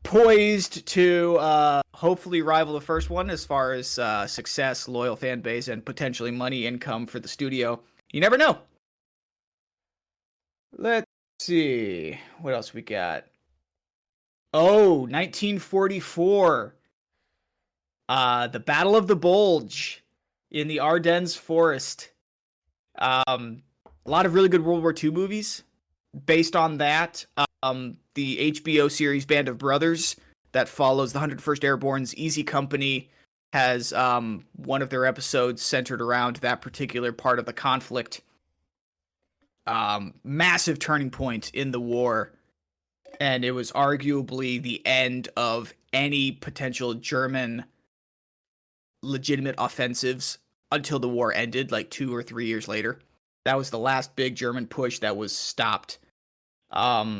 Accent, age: American, 30-49